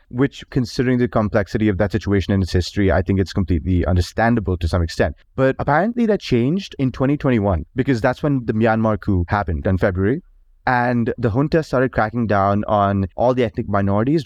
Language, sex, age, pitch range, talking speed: English, male, 30-49, 100-130 Hz, 185 wpm